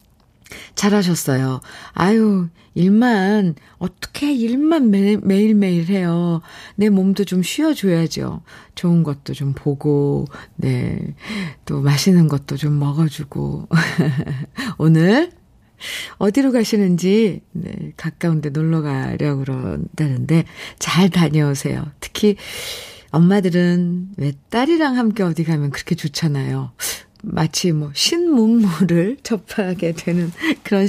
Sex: female